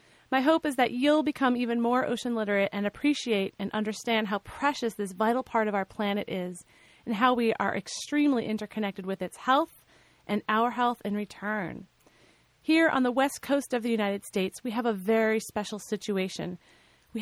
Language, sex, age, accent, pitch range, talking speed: English, female, 30-49, American, 210-265 Hz, 185 wpm